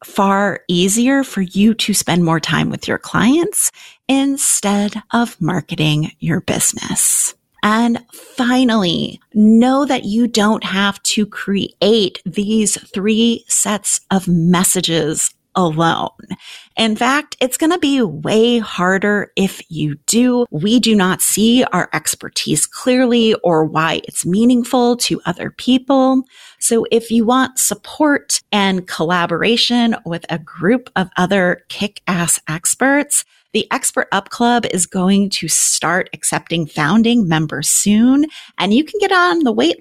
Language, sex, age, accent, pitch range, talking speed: English, female, 30-49, American, 180-245 Hz, 135 wpm